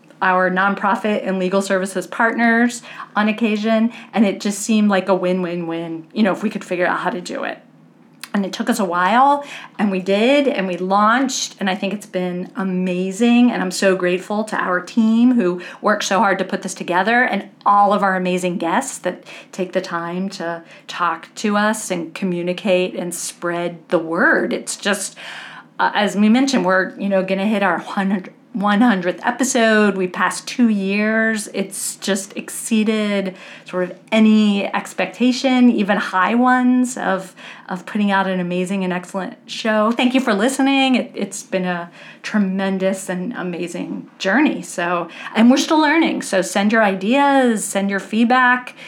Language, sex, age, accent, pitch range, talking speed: English, female, 40-59, American, 185-235 Hz, 175 wpm